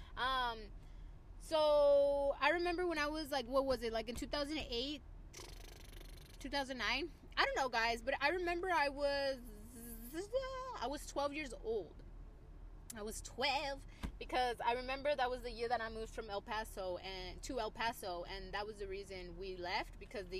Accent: American